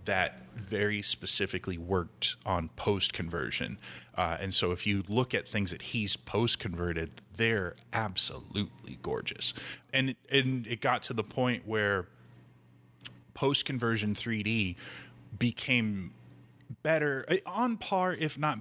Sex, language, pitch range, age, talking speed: male, English, 90-115 Hz, 20-39, 115 wpm